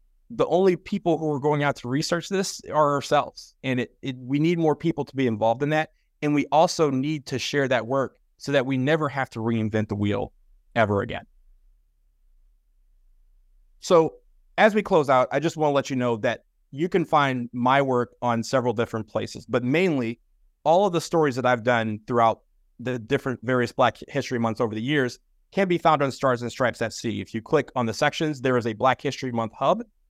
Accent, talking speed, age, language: American, 205 wpm, 30-49, English